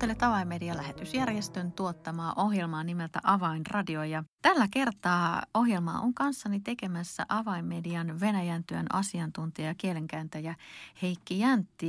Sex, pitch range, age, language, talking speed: female, 160-195 Hz, 30-49, Finnish, 95 wpm